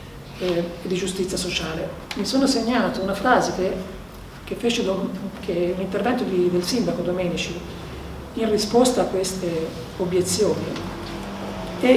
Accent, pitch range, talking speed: native, 185-210 Hz, 110 wpm